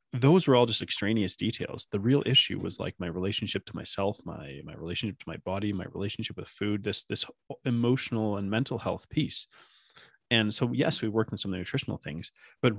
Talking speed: 205 wpm